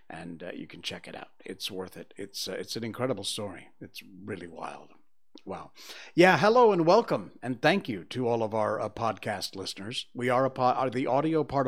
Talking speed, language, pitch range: 215 wpm, English, 105-140 Hz